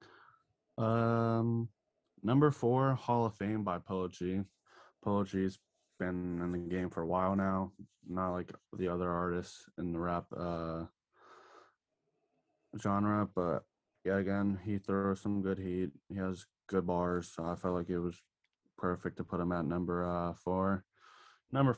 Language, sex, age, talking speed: English, male, 20-39, 155 wpm